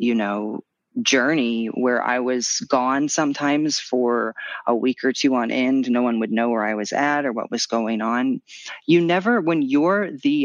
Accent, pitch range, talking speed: American, 115-150 Hz, 190 wpm